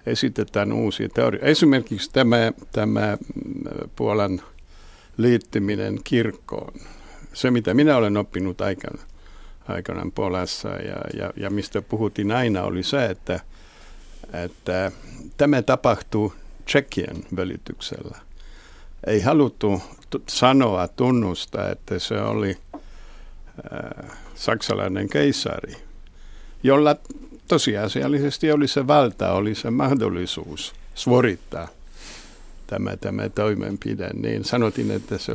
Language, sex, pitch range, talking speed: Finnish, male, 95-125 Hz, 95 wpm